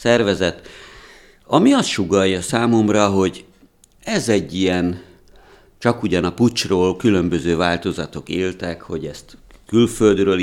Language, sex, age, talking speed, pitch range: Hungarian, male, 60-79, 110 wpm, 85-100 Hz